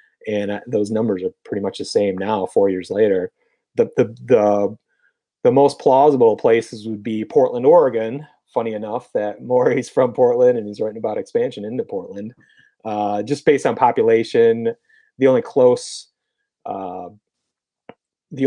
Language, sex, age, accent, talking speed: English, male, 30-49, American, 150 wpm